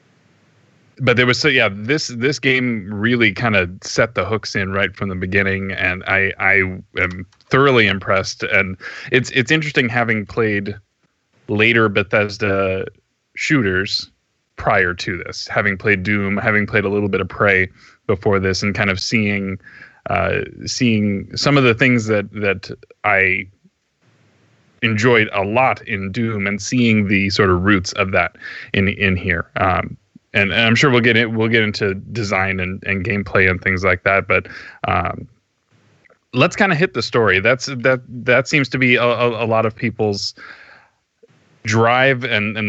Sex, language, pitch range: male, English, 100-120 Hz